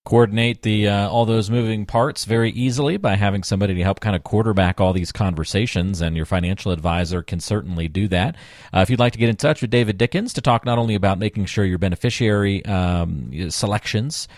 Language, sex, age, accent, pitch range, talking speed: English, male, 40-59, American, 90-115 Hz, 210 wpm